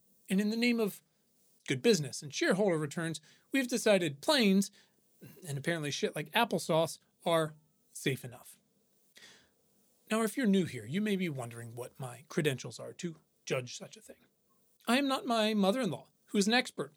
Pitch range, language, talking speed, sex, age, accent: 150-215 Hz, English, 170 wpm, male, 30-49, American